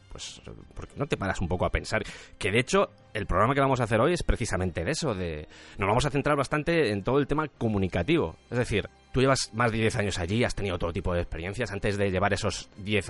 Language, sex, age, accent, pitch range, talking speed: Spanish, male, 30-49, Spanish, 100-135 Hz, 250 wpm